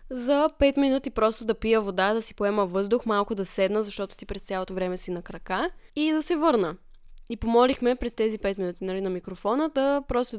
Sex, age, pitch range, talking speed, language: female, 10-29, 190-235 Hz, 215 wpm, Bulgarian